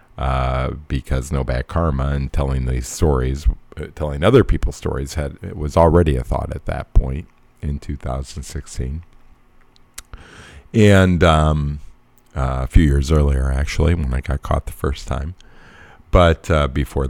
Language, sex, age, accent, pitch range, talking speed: English, male, 50-69, American, 70-90 Hz, 145 wpm